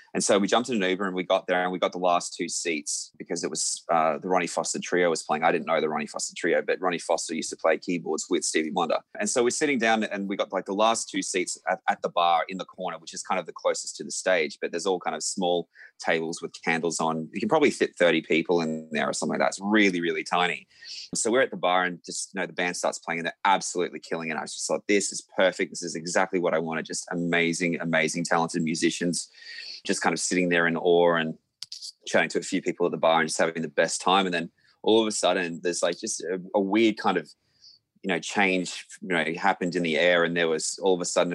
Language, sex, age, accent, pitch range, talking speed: English, male, 20-39, Australian, 85-95 Hz, 275 wpm